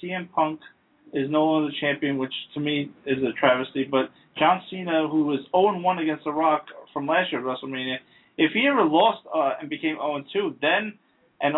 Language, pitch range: English, 130-155 Hz